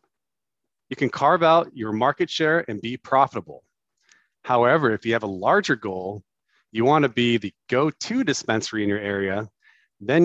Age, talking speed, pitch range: 40-59, 160 wpm, 110-145 Hz